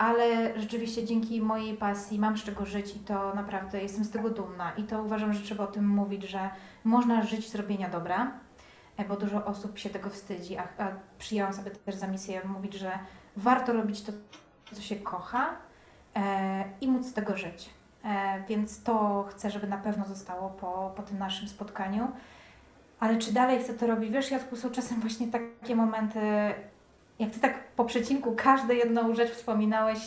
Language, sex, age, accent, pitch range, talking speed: Polish, female, 20-39, native, 200-230 Hz, 180 wpm